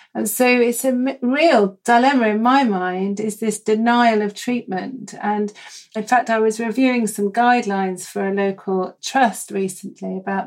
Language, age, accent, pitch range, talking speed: English, 40-59, British, 195-240 Hz, 160 wpm